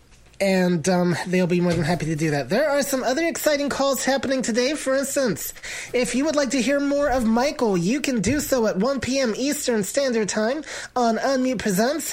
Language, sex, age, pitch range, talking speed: English, male, 30-49, 190-255 Hz, 210 wpm